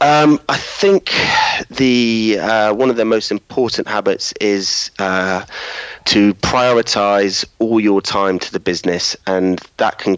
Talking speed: 140 wpm